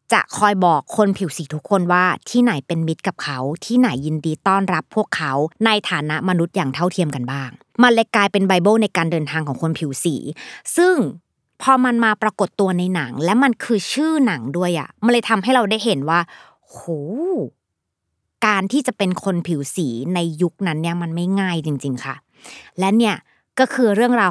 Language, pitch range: Thai, 160-225 Hz